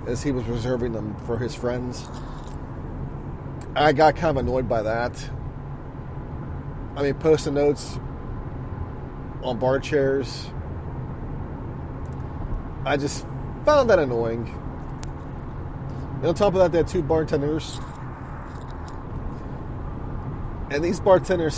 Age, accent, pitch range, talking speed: 30-49, American, 120-145 Hz, 110 wpm